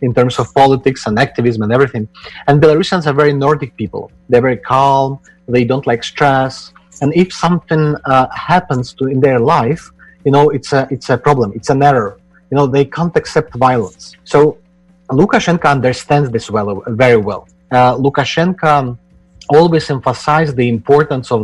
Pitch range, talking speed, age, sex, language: 115-150 Hz, 170 wpm, 30-49, male, Spanish